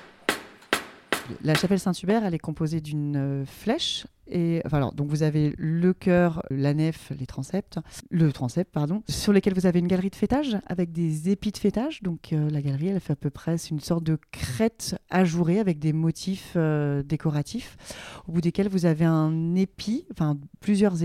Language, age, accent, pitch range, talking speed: French, 40-59, French, 150-185 Hz, 175 wpm